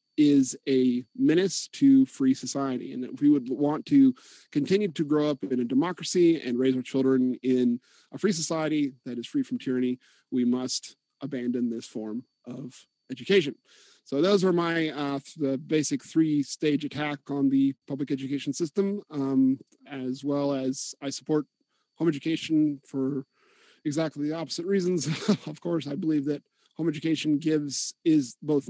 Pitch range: 135-160 Hz